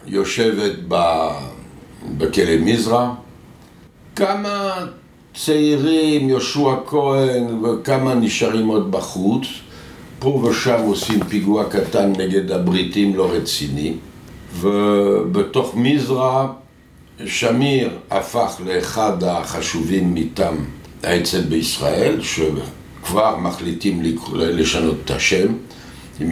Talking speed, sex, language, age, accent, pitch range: 80 wpm, male, Hebrew, 60-79, French, 90-125 Hz